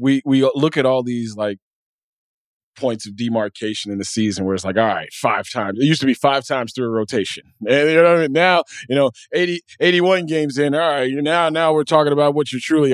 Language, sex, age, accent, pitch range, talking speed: English, male, 20-39, American, 120-160 Hz, 245 wpm